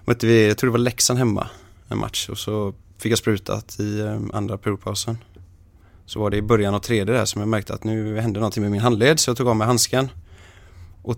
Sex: male